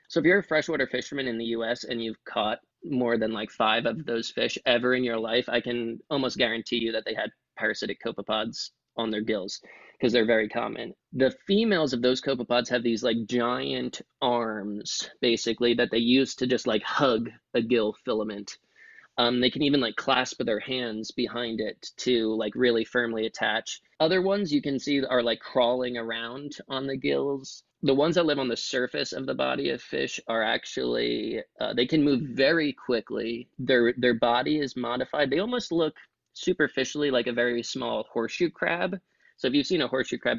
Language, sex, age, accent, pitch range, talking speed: English, male, 20-39, American, 115-135 Hz, 195 wpm